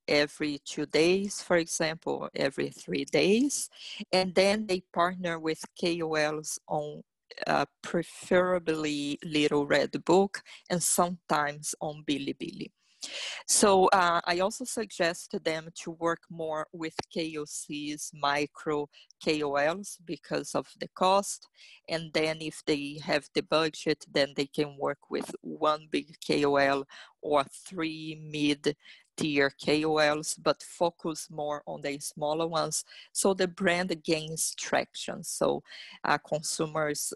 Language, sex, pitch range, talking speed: English, female, 145-175 Hz, 125 wpm